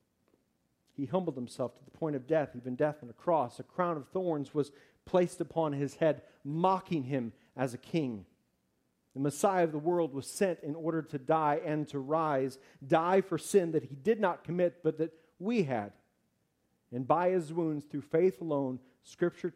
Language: English